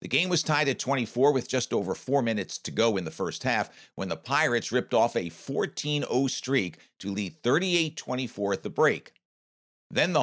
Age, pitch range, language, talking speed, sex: 50-69, 105-140 Hz, English, 195 wpm, male